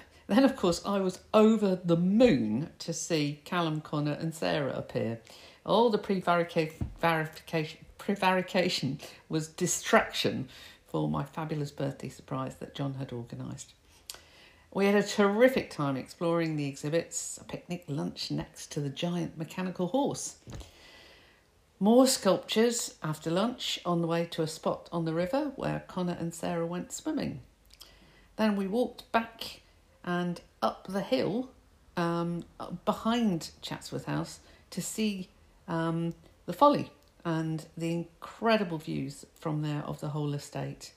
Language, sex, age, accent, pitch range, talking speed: English, female, 50-69, British, 150-200 Hz, 135 wpm